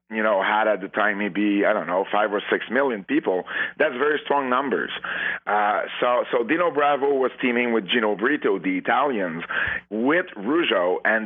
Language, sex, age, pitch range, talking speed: English, male, 40-59, 100-115 Hz, 180 wpm